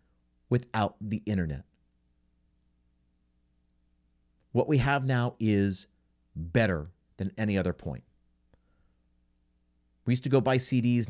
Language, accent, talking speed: English, American, 105 wpm